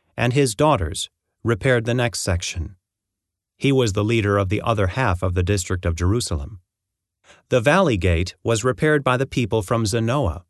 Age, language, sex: 30-49, English, male